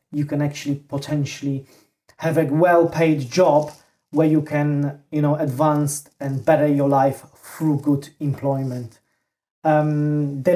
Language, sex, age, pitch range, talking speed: English, male, 30-49, 145-165 Hz, 130 wpm